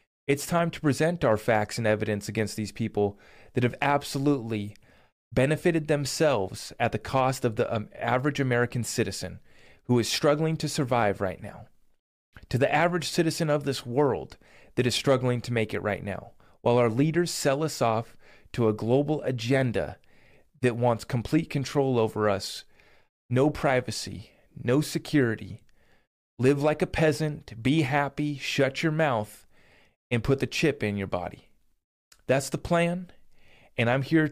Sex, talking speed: male, 155 wpm